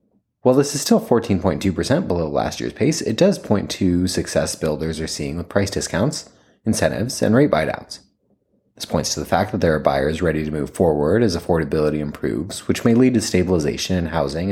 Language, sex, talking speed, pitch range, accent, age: English, male, 195 wpm, 80-110 Hz, American, 30-49